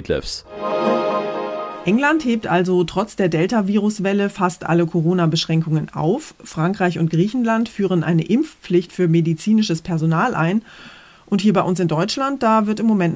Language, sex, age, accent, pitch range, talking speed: German, female, 30-49, German, 165-210 Hz, 135 wpm